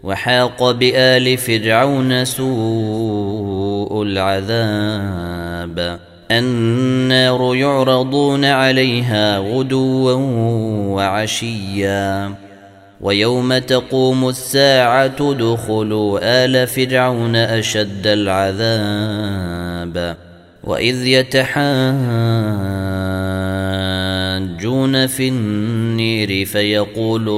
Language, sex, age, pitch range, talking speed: Arabic, male, 30-49, 100-125 Hz, 50 wpm